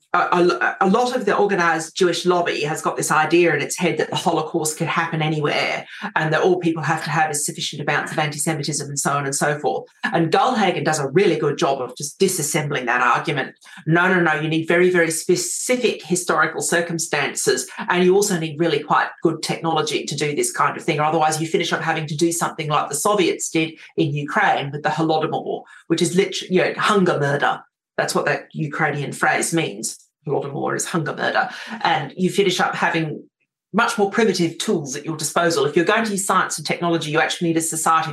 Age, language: 40-59, English